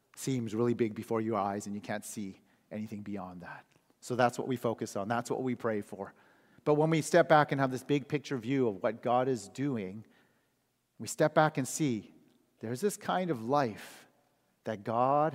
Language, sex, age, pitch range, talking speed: English, male, 40-59, 110-140 Hz, 205 wpm